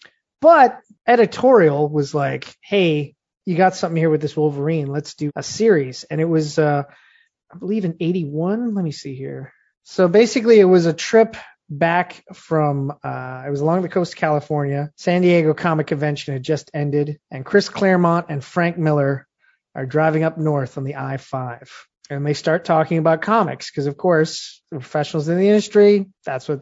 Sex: male